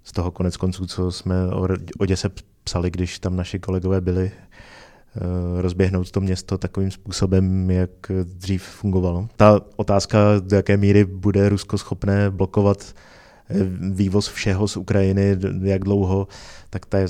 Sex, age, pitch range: male, 30-49, 90-100 Hz